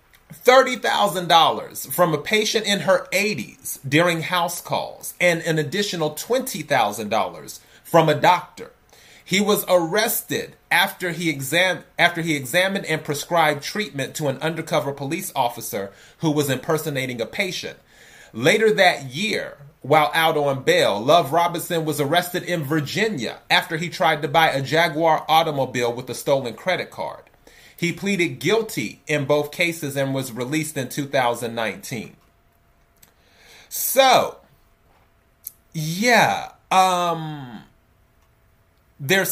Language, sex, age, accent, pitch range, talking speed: English, male, 30-49, American, 140-185 Hz, 120 wpm